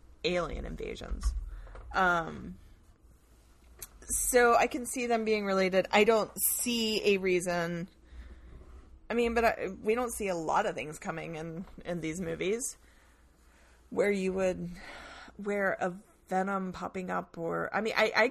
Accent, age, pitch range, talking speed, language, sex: American, 30-49, 140-200 Hz, 145 wpm, English, female